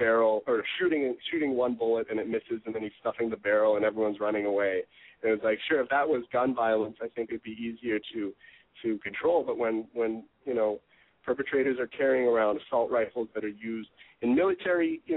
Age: 30-49